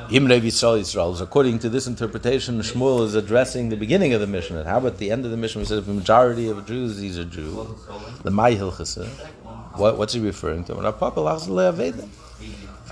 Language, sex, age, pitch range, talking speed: English, male, 50-69, 100-130 Hz, 170 wpm